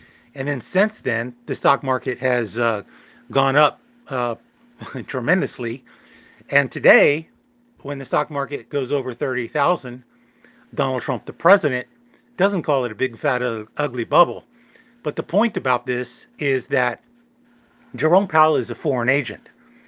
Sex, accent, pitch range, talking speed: male, American, 125-155 Hz, 145 wpm